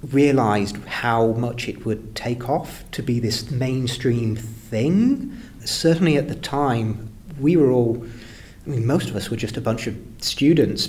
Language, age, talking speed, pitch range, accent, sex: English, 30-49, 165 wpm, 105-125 Hz, British, male